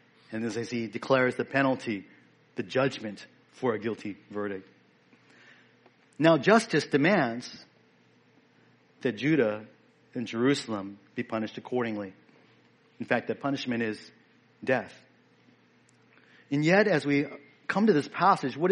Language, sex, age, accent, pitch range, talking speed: English, male, 40-59, American, 120-180 Hz, 120 wpm